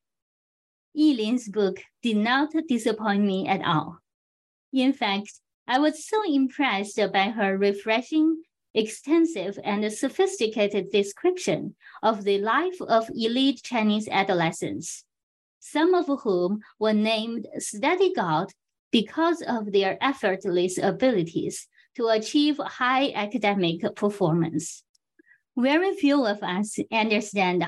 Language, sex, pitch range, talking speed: English, female, 200-275 Hz, 110 wpm